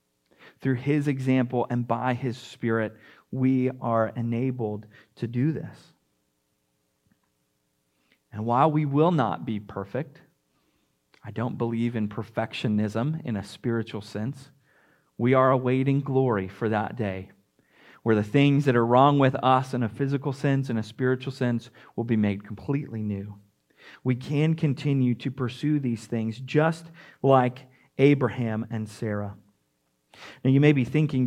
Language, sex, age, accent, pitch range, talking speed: English, male, 40-59, American, 110-160 Hz, 140 wpm